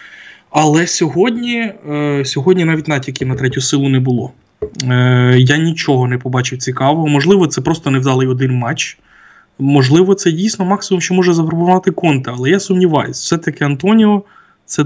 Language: Ukrainian